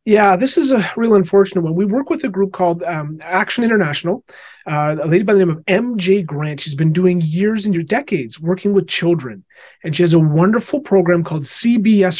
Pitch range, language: 155-195 Hz, English